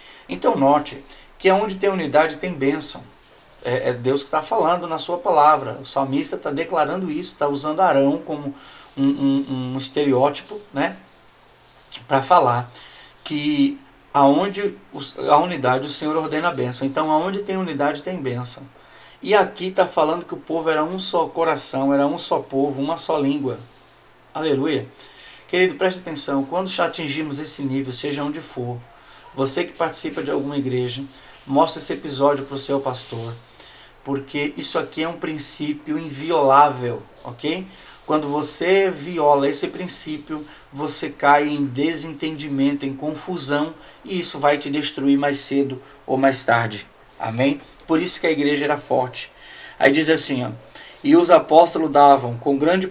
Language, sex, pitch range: Portuguese, male, 135-160 Hz